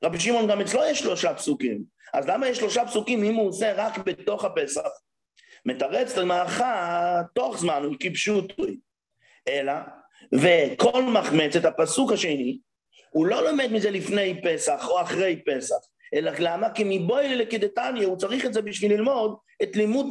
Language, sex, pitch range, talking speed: English, male, 190-245 Hz, 160 wpm